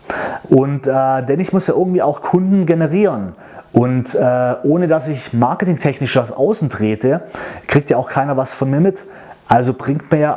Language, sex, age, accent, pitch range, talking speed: German, male, 30-49, German, 130-160 Hz, 180 wpm